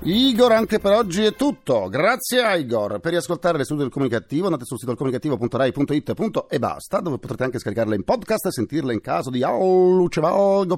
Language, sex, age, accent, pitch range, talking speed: Italian, male, 40-59, native, 95-160 Hz, 190 wpm